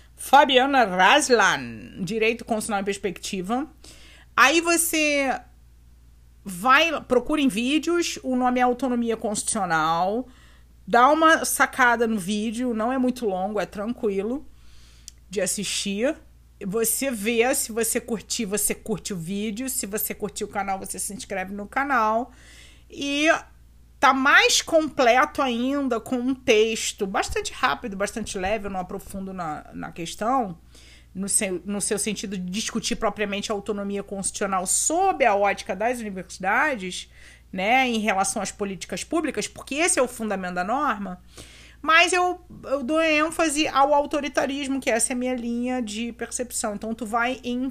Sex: female